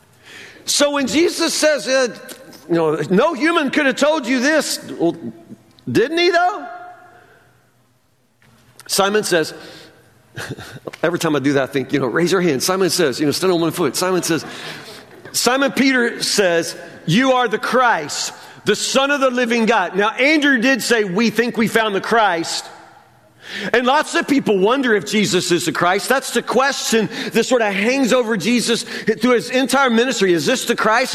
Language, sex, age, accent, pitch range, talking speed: English, male, 50-69, American, 205-275 Hz, 175 wpm